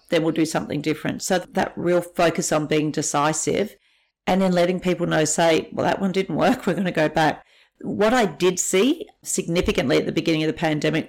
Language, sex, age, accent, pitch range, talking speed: English, female, 50-69, Australian, 160-190 Hz, 210 wpm